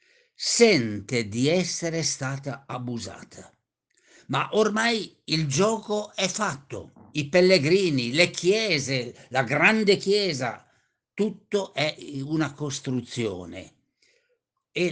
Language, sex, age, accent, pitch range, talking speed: Italian, male, 50-69, native, 125-180 Hz, 95 wpm